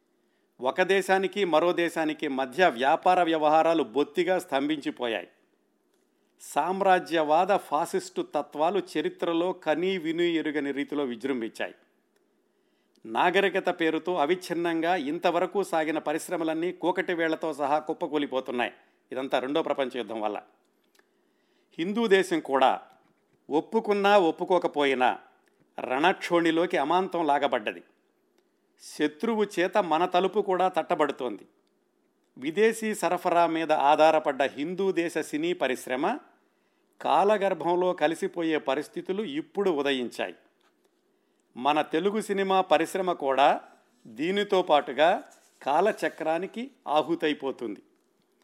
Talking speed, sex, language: 85 wpm, male, Telugu